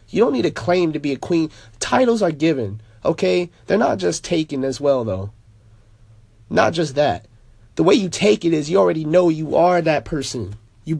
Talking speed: 200 wpm